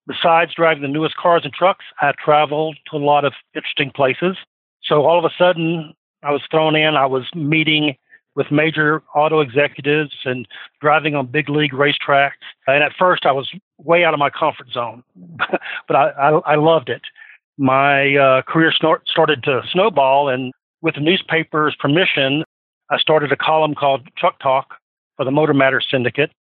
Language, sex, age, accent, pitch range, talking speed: English, male, 50-69, American, 135-160 Hz, 175 wpm